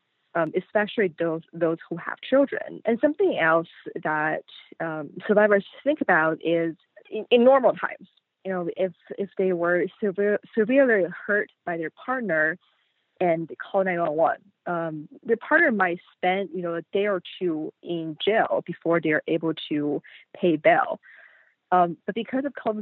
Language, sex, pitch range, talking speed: English, female, 160-210 Hz, 155 wpm